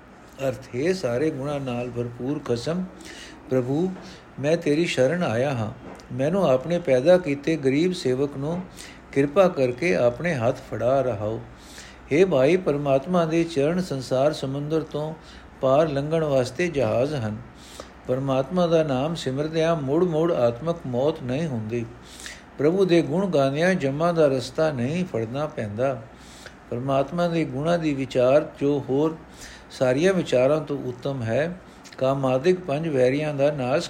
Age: 60-79